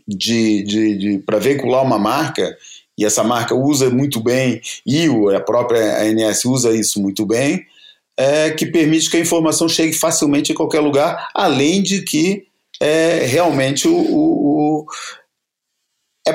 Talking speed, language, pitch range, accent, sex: 150 wpm, Portuguese, 120-160 Hz, Brazilian, male